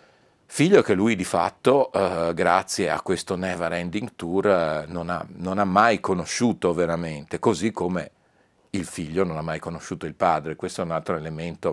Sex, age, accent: male, 40-59, native